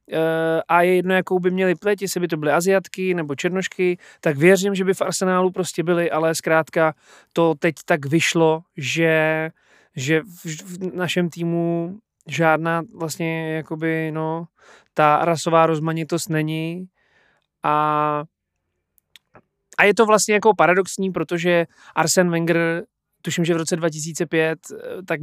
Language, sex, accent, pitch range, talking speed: Czech, male, native, 155-180 Hz, 140 wpm